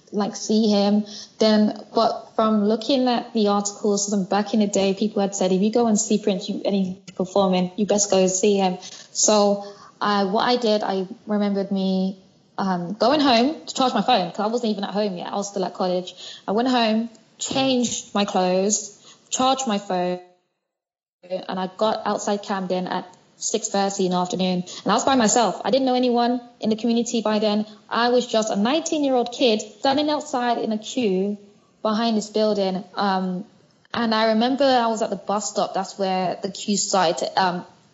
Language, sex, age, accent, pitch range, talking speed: English, female, 20-39, British, 195-235 Hz, 200 wpm